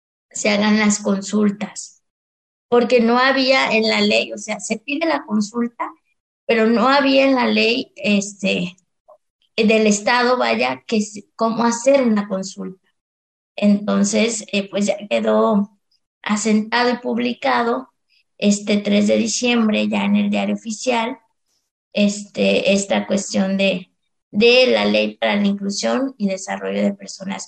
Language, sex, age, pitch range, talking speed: Spanish, female, 20-39, 195-230 Hz, 135 wpm